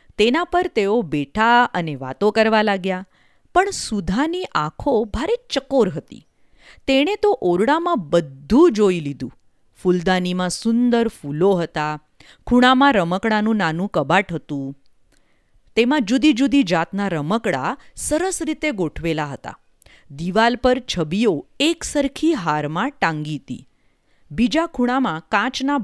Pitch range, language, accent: 170-275 Hz, Hindi, native